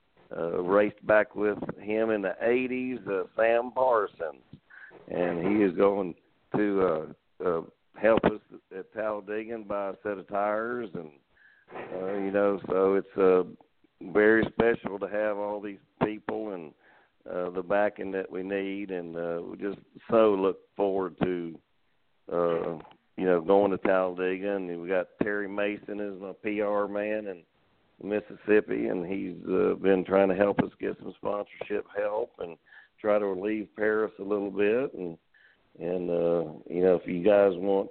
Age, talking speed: 50-69, 165 wpm